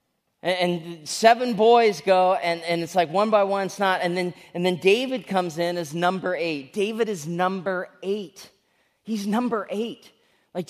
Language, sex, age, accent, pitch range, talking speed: English, male, 30-49, American, 180-230 Hz, 170 wpm